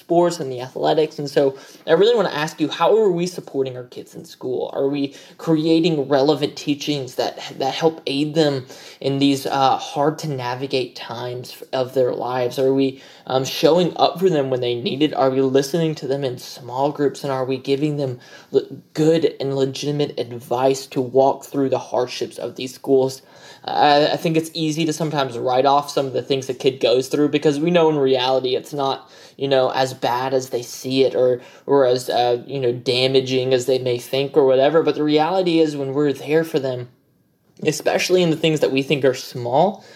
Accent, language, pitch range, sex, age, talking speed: American, English, 130-150 Hz, male, 20-39, 210 wpm